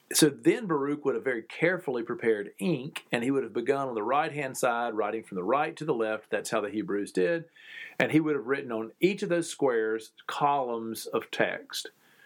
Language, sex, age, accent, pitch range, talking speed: English, male, 40-59, American, 115-170 Hz, 210 wpm